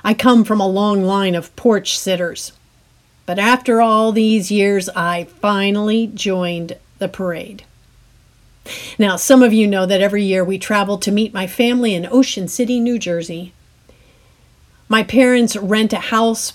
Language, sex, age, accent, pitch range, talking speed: English, female, 50-69, American, 180-230 Hz, 155 wpm